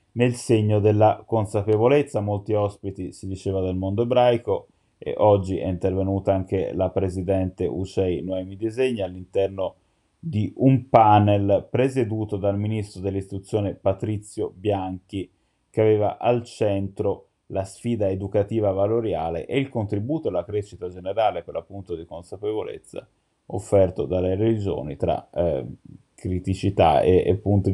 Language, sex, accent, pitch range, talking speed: Italian, male, native, 95-110 Hz, 125 wpm